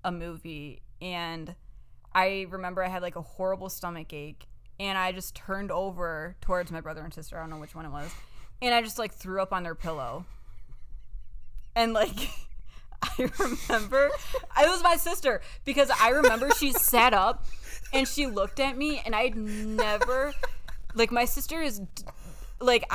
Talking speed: 170 wpm